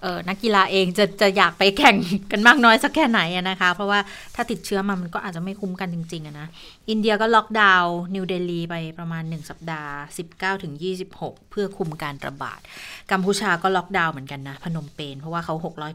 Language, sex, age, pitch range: Thai, female, 20-39, 170-210 Hz